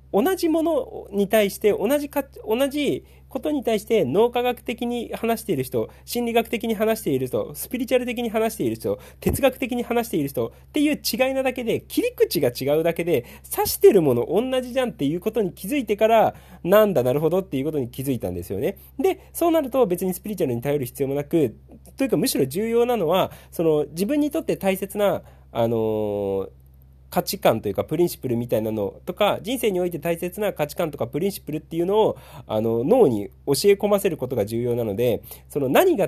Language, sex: Japanese, male